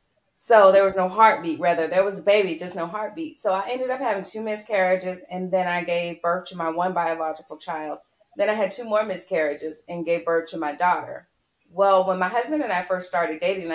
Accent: American